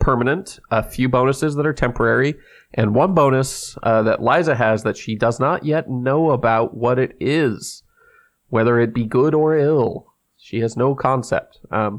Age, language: 30-49, English